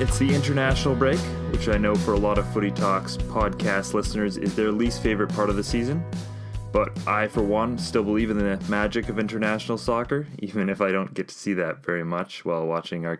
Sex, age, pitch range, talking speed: male, 20-39, 100-120 Hz, 220 wpm